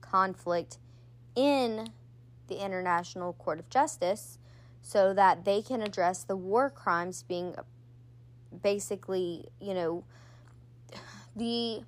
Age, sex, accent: 10-29, female, American